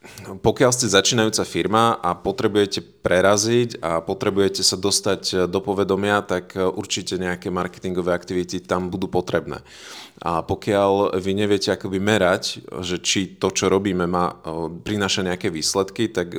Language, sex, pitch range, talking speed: Slovak, male, 90-105 Hz, 130 wpm